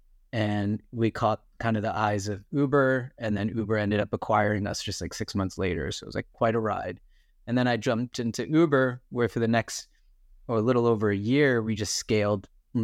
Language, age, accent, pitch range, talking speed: English, 30-49, American, 105-125 Hz, 220 wpm